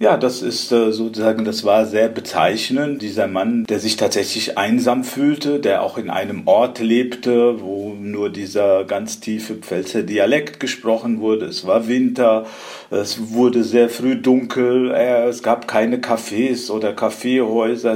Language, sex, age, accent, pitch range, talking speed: German, male, 50-69, German, 110-125 Hz, 145 wpm